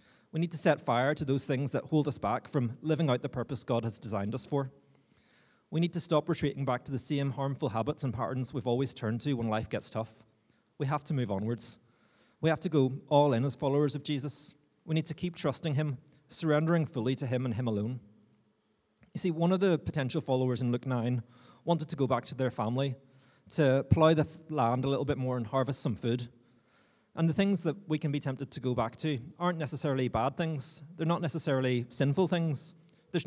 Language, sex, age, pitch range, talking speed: English, male, 30-49, 125-150 Hz, 220 wpm